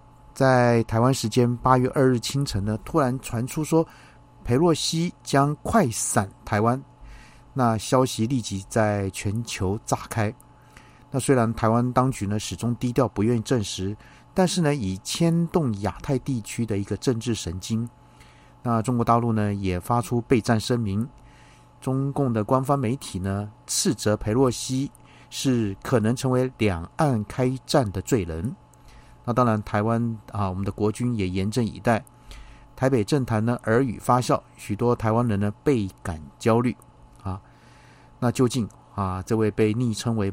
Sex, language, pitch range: male, Chinese, 105-125 Hz